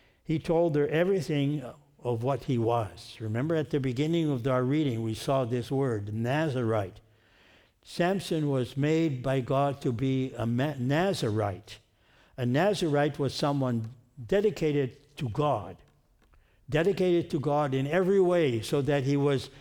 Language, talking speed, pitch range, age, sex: English, 140 wpm, 115-145 Hz, 60-79, male